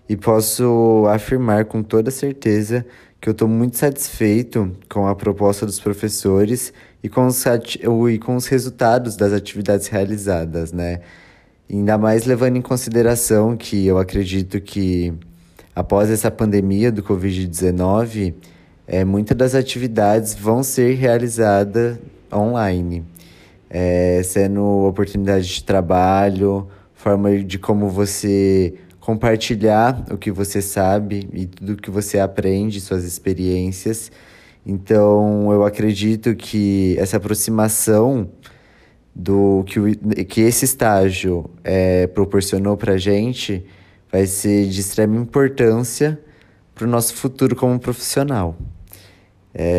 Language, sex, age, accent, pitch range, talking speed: Portuguese, male, 20-39, Brazilian, 95-115 Hz, 115 wpm